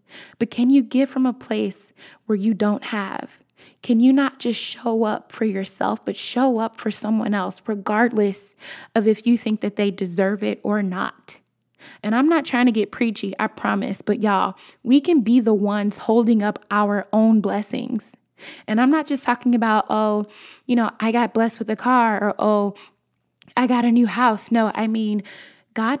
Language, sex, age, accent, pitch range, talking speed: English, female, 20-39, American, 205-240 Hz, 190 wpm